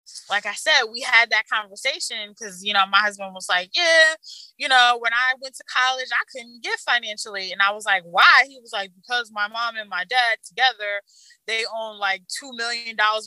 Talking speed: 215 wpm